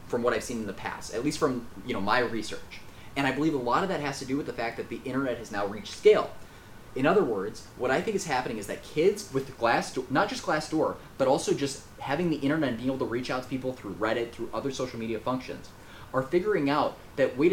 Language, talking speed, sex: English, 270 wpm, male